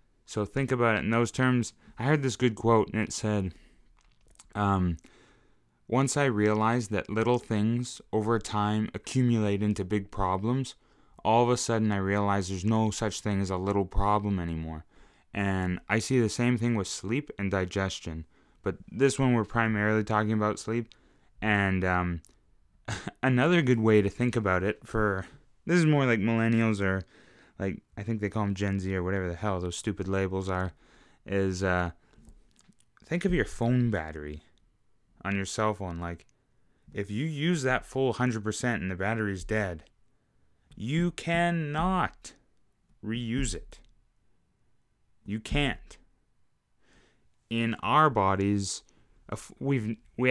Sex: male